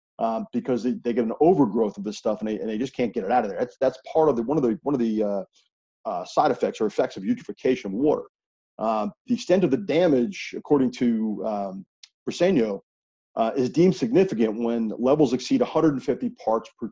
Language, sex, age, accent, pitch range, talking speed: English, male, 40-59, American, 115-160 Hz, 220 wpm